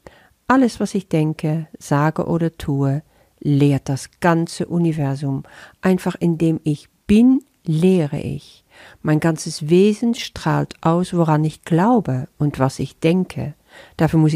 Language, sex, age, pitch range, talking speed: German, female, 50-69, 140-175 Hz, 130 wpm